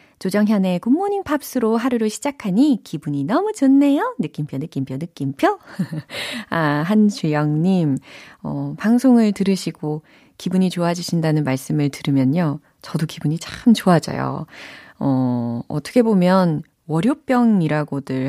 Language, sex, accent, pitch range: Korean, female, native, 150-235 Hz